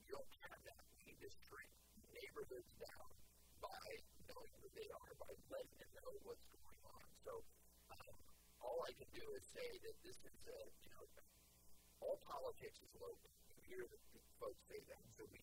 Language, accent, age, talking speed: English, American, 40-59, 185 wpm